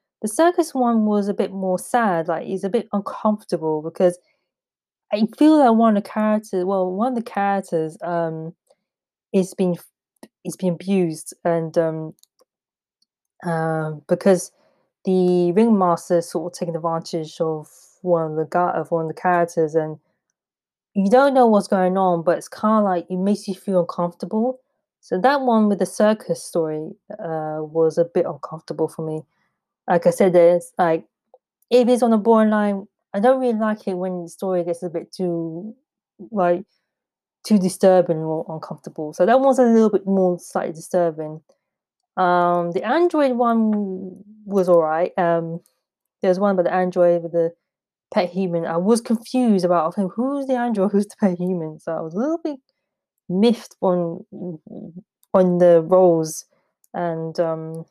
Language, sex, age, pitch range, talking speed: English, female, 20-39, 170-215 Hz, 165 wpm